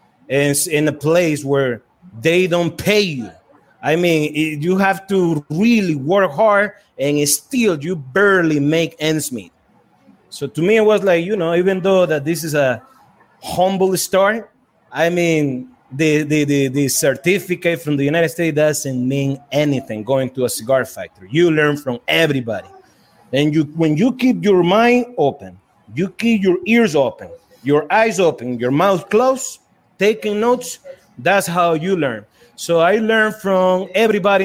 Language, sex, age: English, male, 30-49